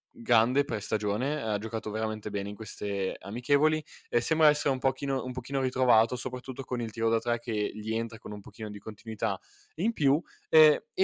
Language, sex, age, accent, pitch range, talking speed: Italian, male, 20-39, native, 110-135 Hz, 180 wpm